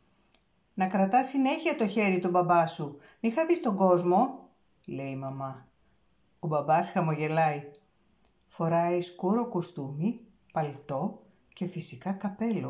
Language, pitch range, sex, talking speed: Greek, 160-225 Hz, female, 115 wpm